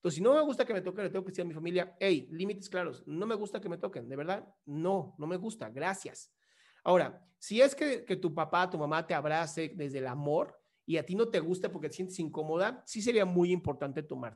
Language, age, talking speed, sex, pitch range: Spanish, 30-49, 250 wpm, male, 150-195 Hz